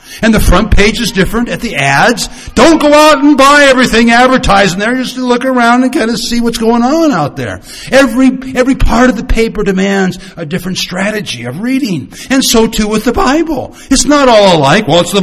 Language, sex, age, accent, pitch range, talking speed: English, male, 60-79, American, 160-240 Hz, 220 wpm